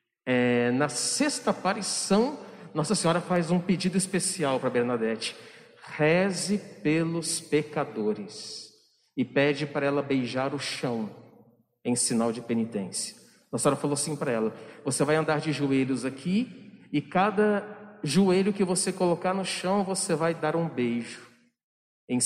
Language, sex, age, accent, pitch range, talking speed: Portuguese, male, 50-69, Brazilian, 125-185 Hz, 135 wpm